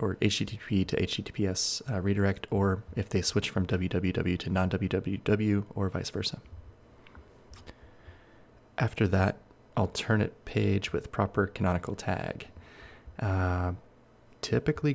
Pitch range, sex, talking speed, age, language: 95-110 Hz, male, 110 wpm, 20-39, English